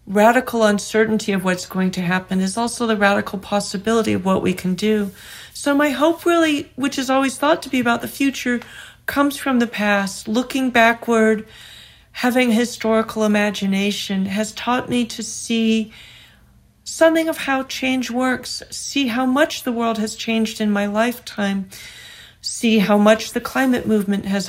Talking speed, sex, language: 160 wpm, female, English